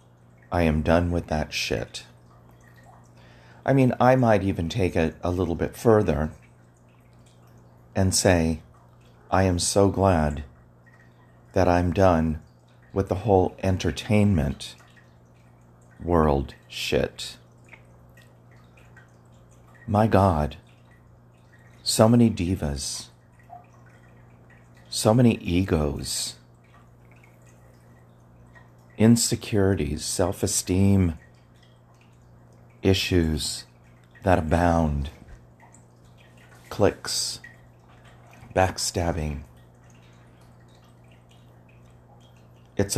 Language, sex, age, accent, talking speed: English, male, 40-59, American, 65 wpm